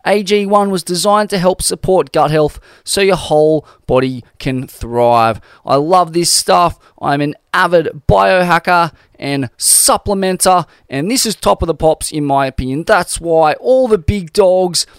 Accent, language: Australian, English